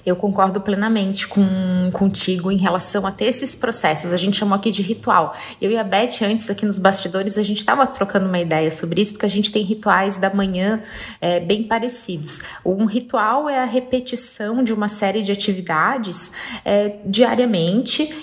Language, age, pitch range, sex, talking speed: Portuguese, 30-49, 190-235 Hz, female, 180 wpm